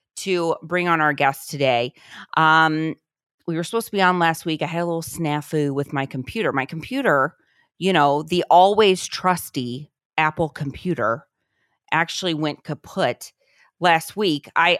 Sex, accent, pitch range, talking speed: female, American, 145-185 Hz, 155 wpm